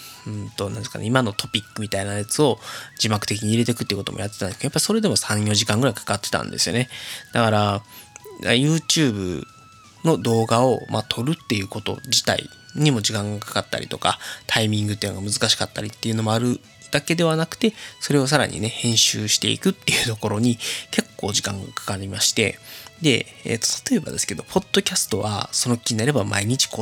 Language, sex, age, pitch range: Japanese, male, 20-39, 105-135 Hz